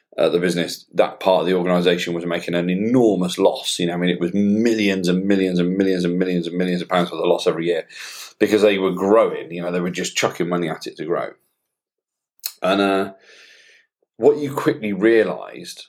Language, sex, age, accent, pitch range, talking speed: English, male, 40-59, British, 90-115 Hz, 210 wpm